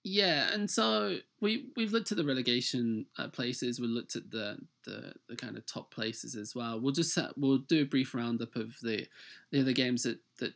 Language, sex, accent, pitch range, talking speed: English, male, British, 115-150 Hz, 220 wpm